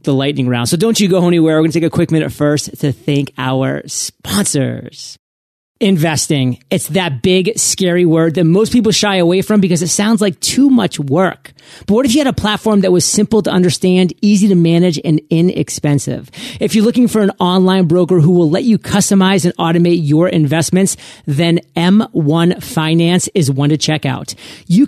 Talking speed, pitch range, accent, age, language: 195 wpm, 155-195 Hz, American, 30-49, English